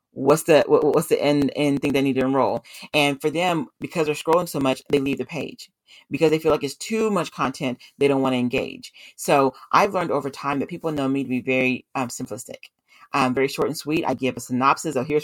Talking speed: 235 wpm